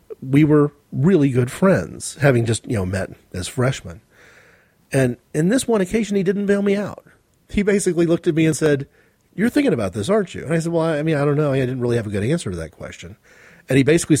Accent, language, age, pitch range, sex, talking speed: American, English, 40-59, 115-165 Hz, male, 240 wpm